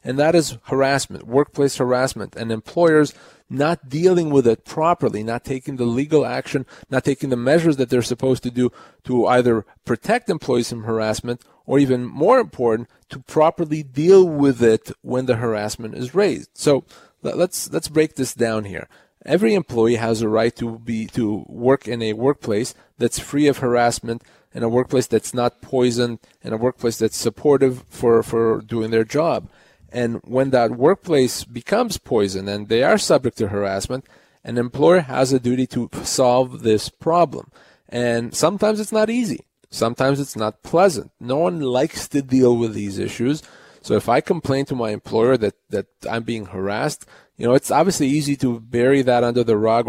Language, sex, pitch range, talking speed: English, male, 115-140 Hz, 175 wpm